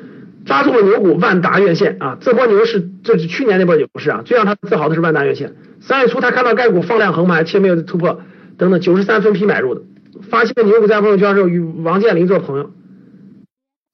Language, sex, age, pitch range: Chinese, male, 50-69, 175-225 Hz